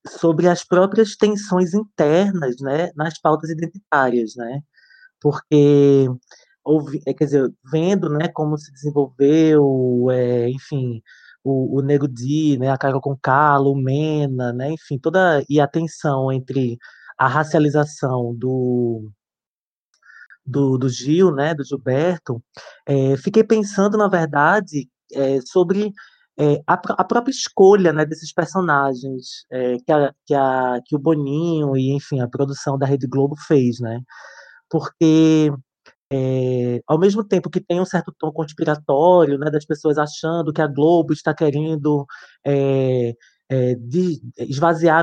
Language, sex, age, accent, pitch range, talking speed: Portuguese, male, 20-39, Brazilian, 135-165 Hz, 135 wpm